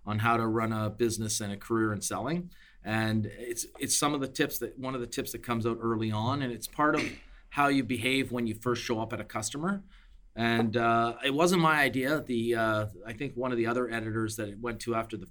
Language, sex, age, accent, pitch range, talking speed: English, male, 30-49, American, 115-135 Hz, 250 wpm